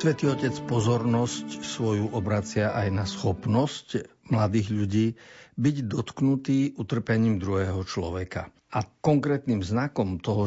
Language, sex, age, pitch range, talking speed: Slovak, male, 50-69, 95-120 Hz, 110 wpm